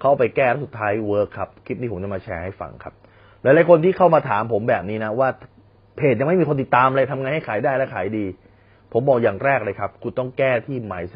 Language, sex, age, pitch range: Thai, male, 30-49, 100-150 Hz